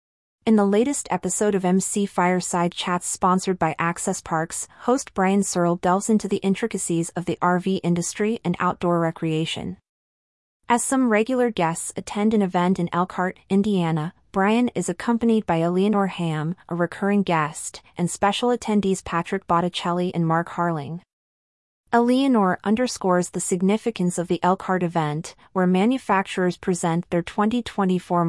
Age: 30-49